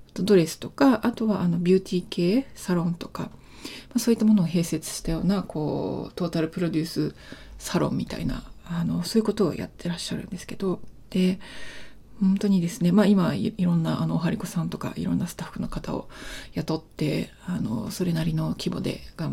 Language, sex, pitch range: Japanese, female, 175-220 Hz